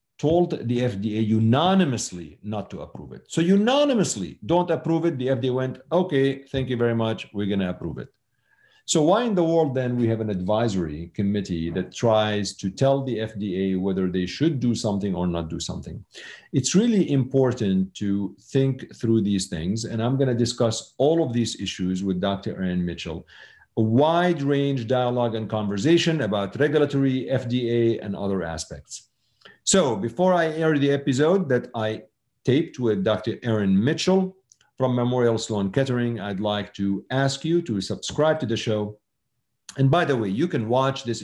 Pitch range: 100-140 Hz